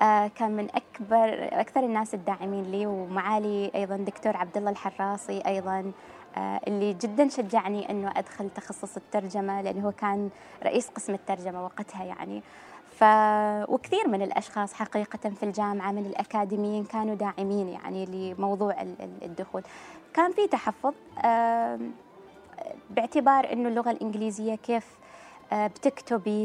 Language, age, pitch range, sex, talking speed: Arabic, 20-39, 200-240 Hz, female, 125 wpm